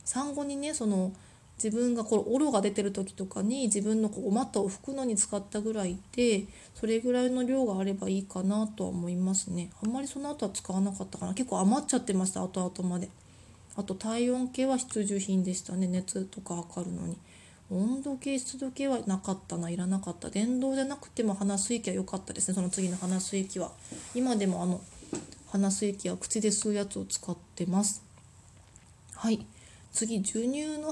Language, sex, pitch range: Japanese, female, 190-250 Hz